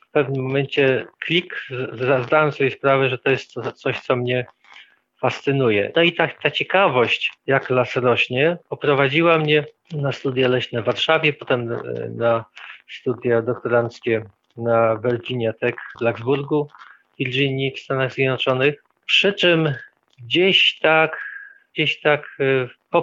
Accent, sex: native, male